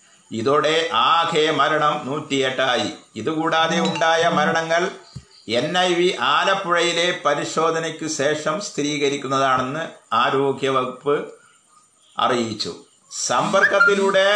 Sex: male